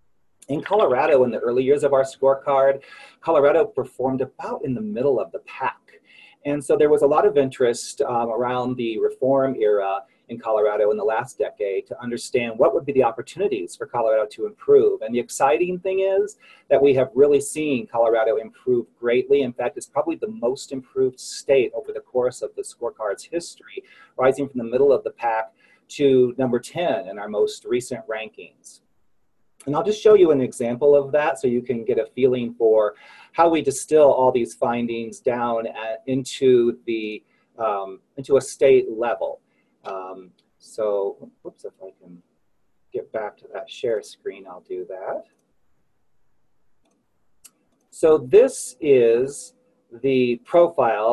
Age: 40-59